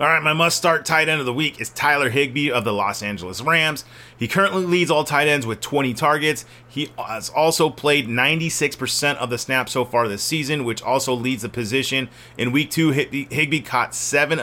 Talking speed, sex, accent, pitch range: 205 wpm, male, American, 120-155 Hz